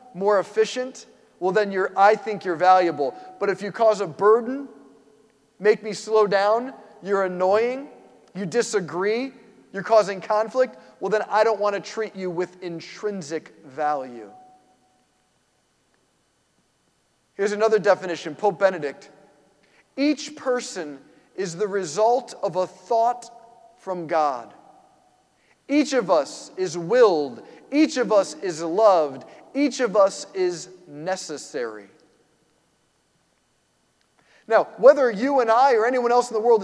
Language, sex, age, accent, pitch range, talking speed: English, male, 40-59, American, 195-255 Hz, 130 wpm